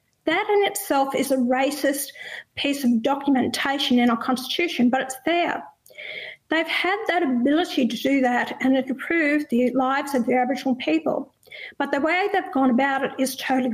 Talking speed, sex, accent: 175 wpm, female, Australian